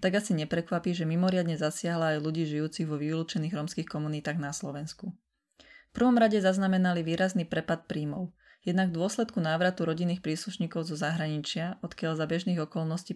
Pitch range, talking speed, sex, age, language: 155-190 Hz, 155 wpm, female, 20-39, Slovak